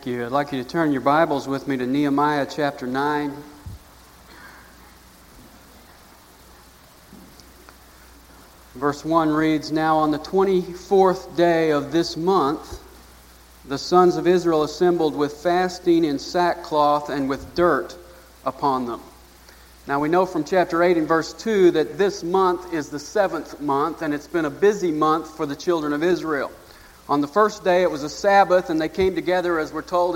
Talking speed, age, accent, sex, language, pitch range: 160 wpm, 40-59, American, male, English, 150-190 Hz